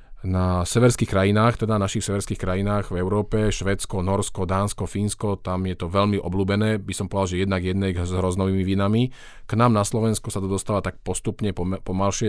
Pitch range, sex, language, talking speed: 90-105 Hz, male, Slovak, 180 wpm